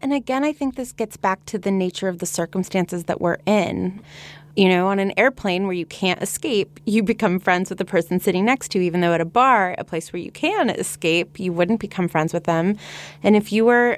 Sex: female